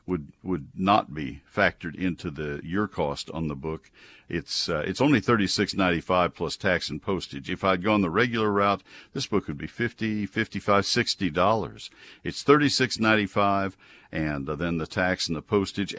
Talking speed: 190 wpm